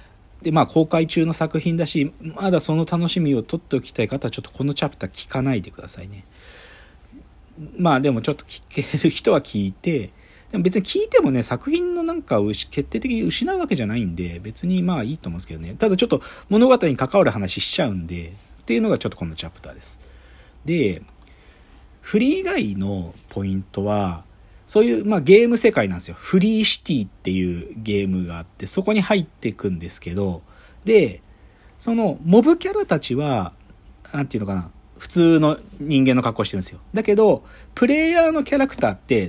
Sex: male